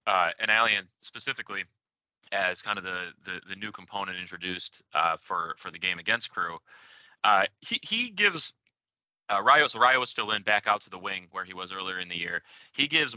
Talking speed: 210 wpm